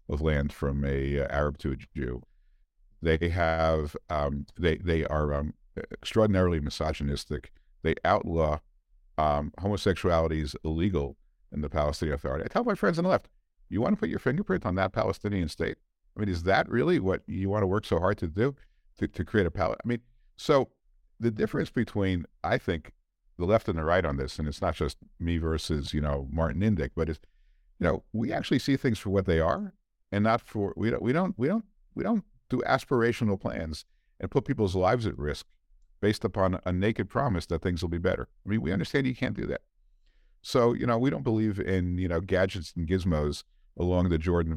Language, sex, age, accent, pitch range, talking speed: English, male, 50-69, American, 75-100 Hz, 205 wpm